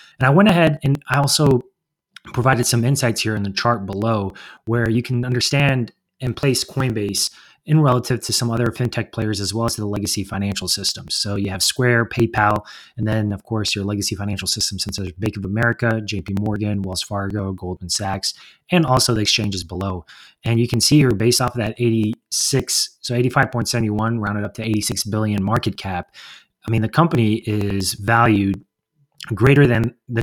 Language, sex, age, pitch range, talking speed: English, male, 30-49, 100-125 Hz, 190 wpm